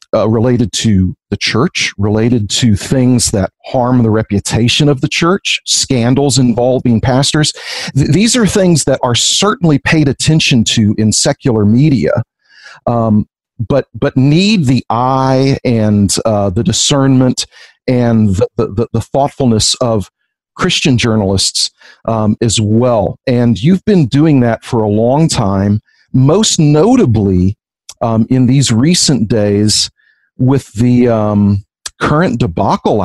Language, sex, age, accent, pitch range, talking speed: English, male, 50-69, American, 110-135 Hz, 135 wpm